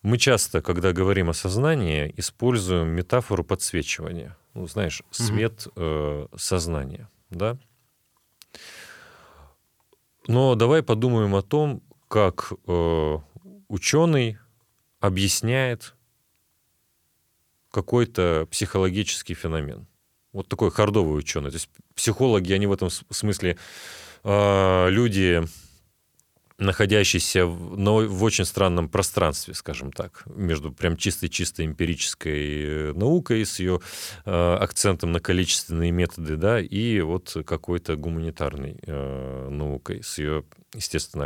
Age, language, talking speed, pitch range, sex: 30-49, Russian, 100 wpm, 80-105 Hz, male